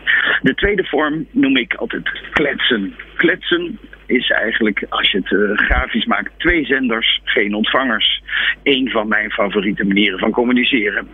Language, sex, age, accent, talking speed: Dutch, male, 50-69, Dutch, 145 wpm